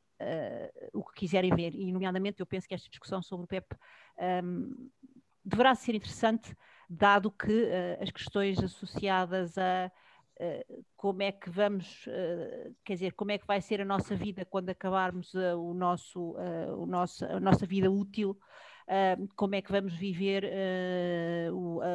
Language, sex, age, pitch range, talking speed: Portuguese, female, 40-59, 185-200 Hz, 135 wpm